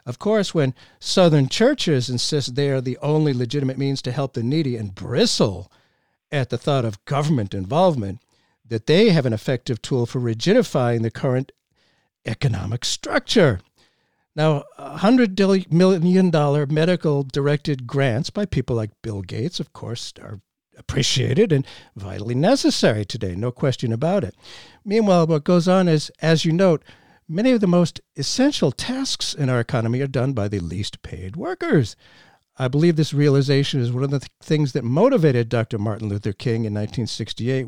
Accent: American